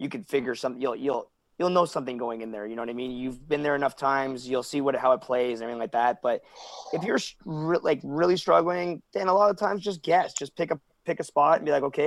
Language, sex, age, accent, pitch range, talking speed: English, male, 20-39, American, 145-185 Hz, 275 wpm